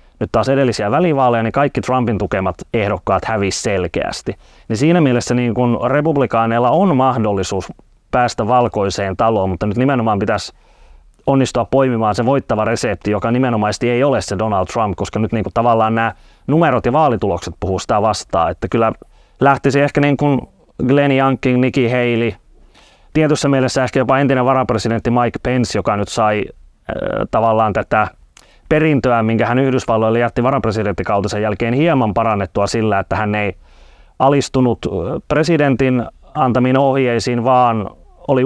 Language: Finnish